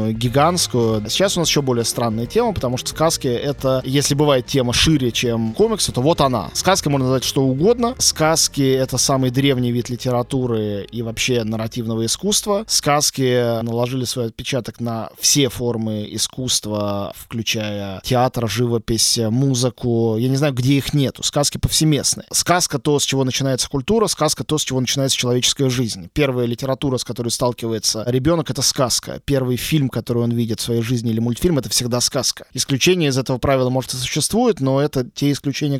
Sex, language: male, Russian